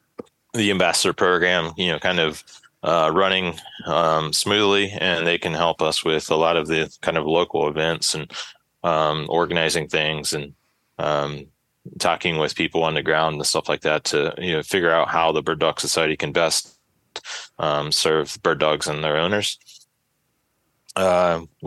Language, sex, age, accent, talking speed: English, male, 20-39, American, 170 wpm